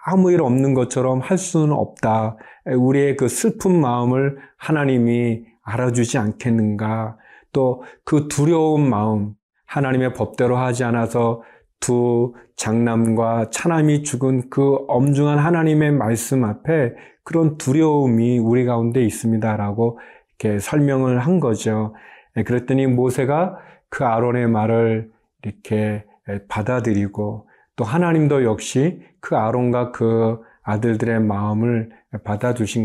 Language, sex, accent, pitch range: Korean, male, native, 110-140 Hz